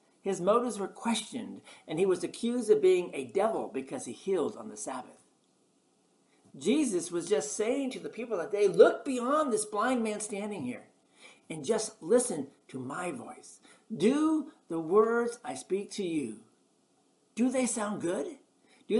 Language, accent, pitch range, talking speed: English, American, 185-290 Hz, 165 wpm